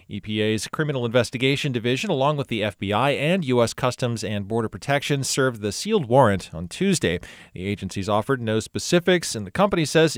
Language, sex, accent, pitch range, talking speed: English, male, American, 110-150 Hz, 170 wpm